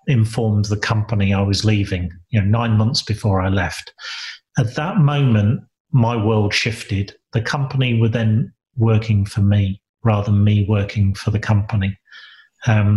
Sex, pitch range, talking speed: male, 105-120 Hz, 155 wpm